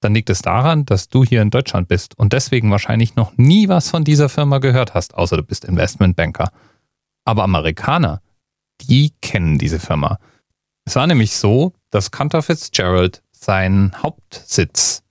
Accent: German